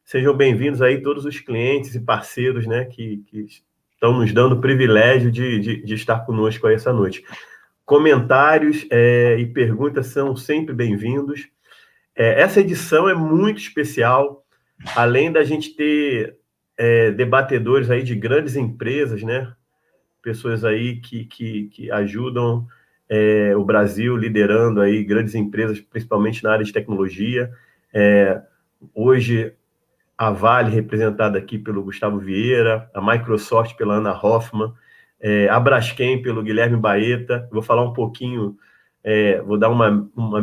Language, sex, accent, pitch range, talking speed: Portuguese, male, Brazilian, 110-135 Hz, 135 wpm